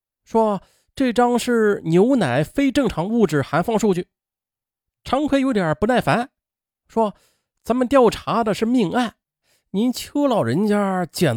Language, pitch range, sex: Chinese, 125-205 Hz, male